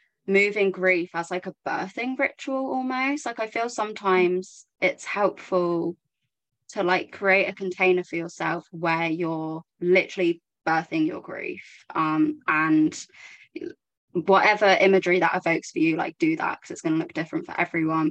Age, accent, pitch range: 20-39, British, 160-185 Hz